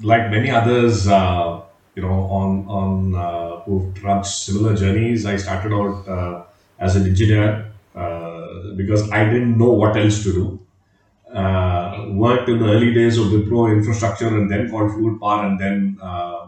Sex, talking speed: male, 165 wpm